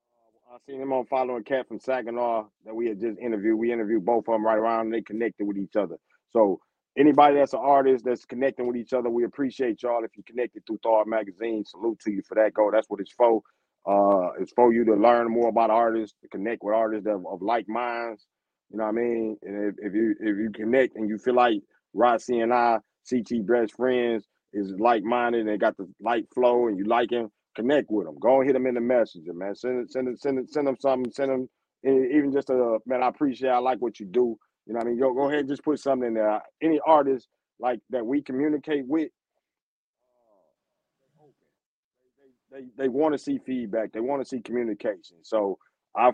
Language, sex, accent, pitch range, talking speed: English, male, American, 110-130 Hz, 230 wpm